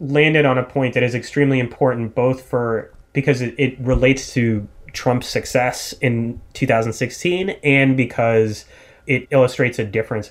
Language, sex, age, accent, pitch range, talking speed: English, male, 30-49, American, 110-135 Hz, 140 wpm